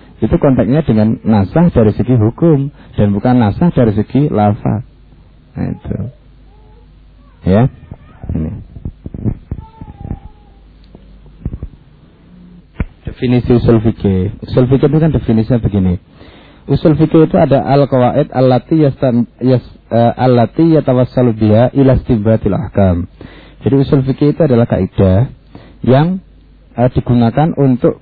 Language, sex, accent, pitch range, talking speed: Indonesian, male, native, 105-135 Hz, 105 wpm